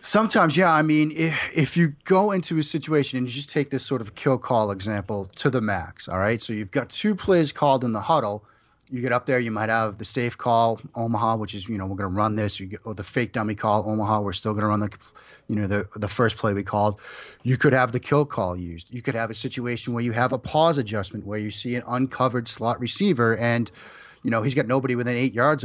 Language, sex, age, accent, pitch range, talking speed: English, male, 30-49, American, 110-135 Hz, 255 wpm